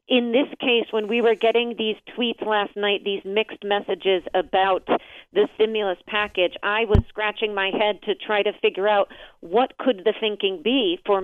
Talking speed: 180 wpm